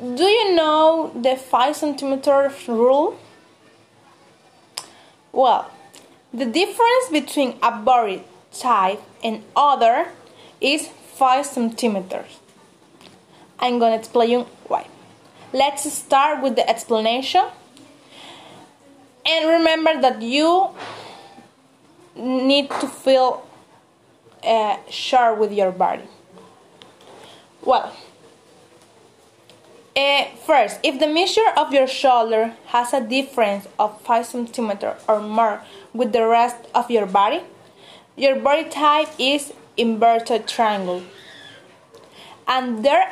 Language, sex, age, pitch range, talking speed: Spanish, female, 20-39, 235-300 Hz, 100 wpm